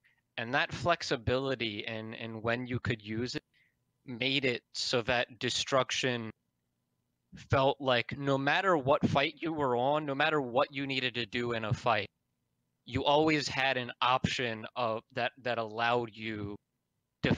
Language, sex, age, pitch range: English, male, 20-39, 115-140 Hz